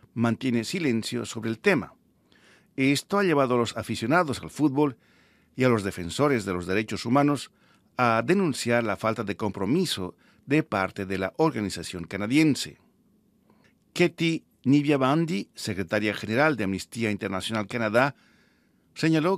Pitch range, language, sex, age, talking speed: 105-155 Hz, Spanish, male, 50-69, 130 wpm